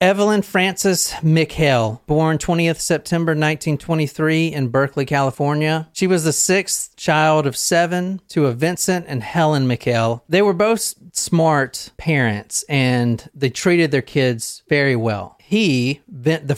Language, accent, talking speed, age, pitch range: English, American, 135 wpm, 40-59, 125-160 Hz